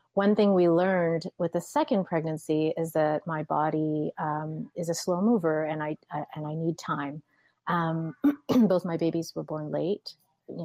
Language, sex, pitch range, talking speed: English, female, 155-195 Hz, 180 wpm